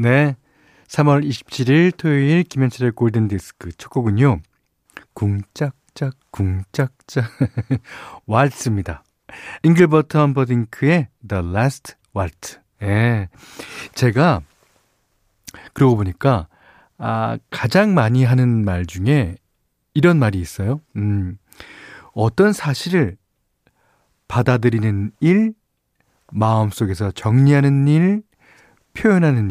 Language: Korean